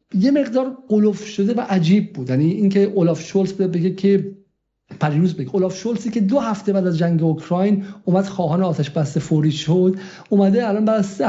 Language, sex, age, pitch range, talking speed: Persian, male, 50-69, 165-210 Hz, 170 wpm